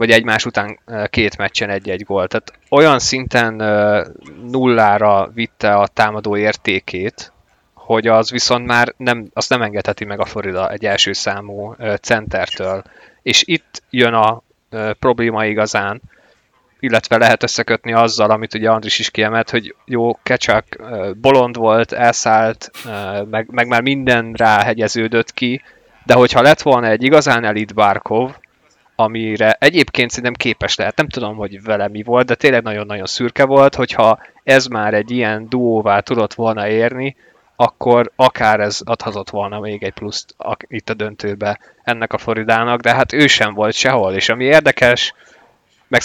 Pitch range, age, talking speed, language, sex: 105-120 Hz, 20-39, 150 wpm, Hungarian, male